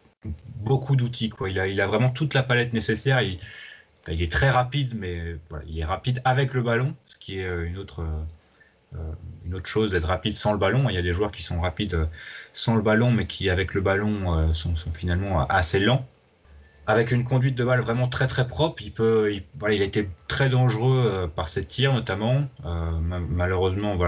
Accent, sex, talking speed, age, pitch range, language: French, male, 215 wpm, 30-49, 90-120 Hz, French